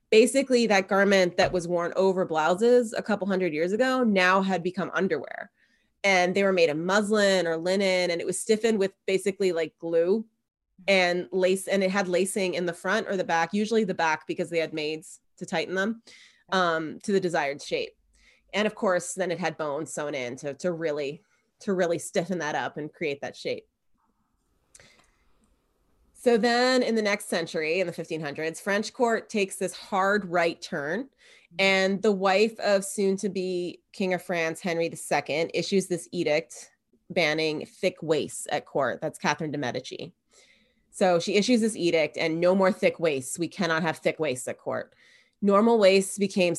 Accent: American